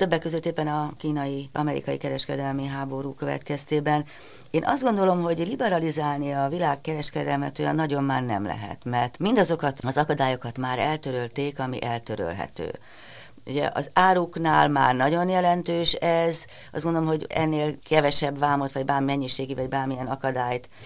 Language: Hungarian